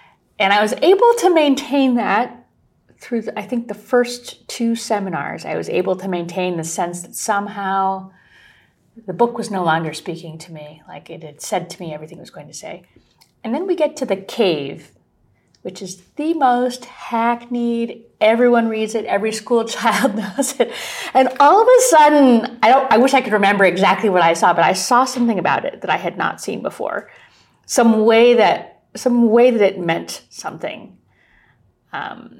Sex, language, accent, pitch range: female, English, American, 180-245 Hz